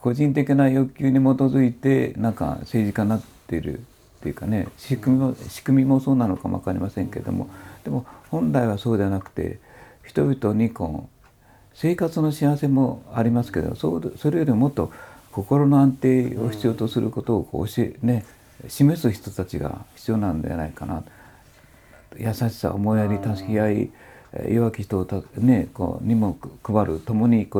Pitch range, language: 105-135 Hz, Japanese